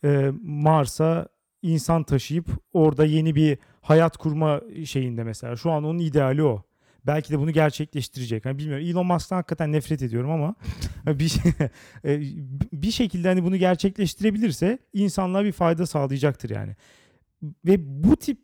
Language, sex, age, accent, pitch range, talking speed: Turkish, male, 40-59, native, 145-205 Hz, 135 wpm